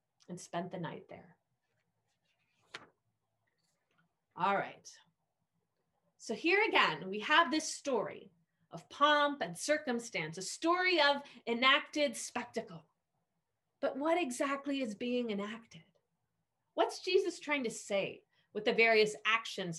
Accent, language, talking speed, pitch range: American, English, 115 wpm, 190-295 Hz